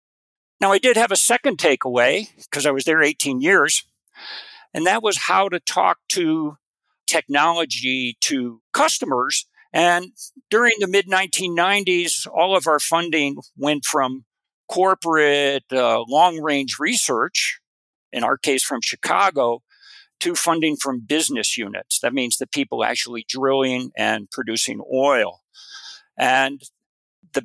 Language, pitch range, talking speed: English, 130-195 Hz, 125 wpm